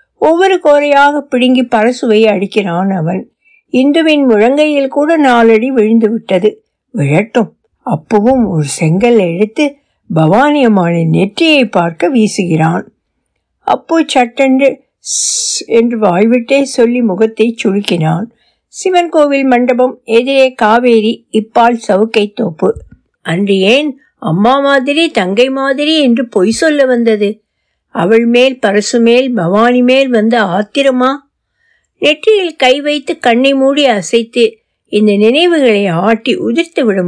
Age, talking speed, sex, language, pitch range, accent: 60-79, 95 wpm, female, Tamil, 210-275 Hz, native